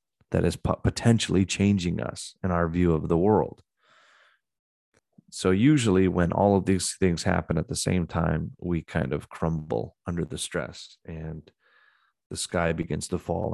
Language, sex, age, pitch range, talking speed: English, male, 30-49, 85-95 Hz, 160 wpm